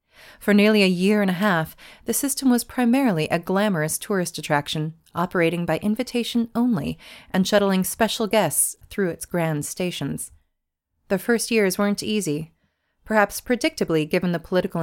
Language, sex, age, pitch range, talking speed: English, female, 30-49, 160-210 Hz, 150 wpm